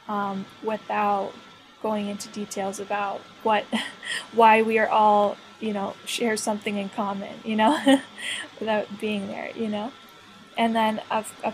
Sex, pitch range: female, 205-225 Hz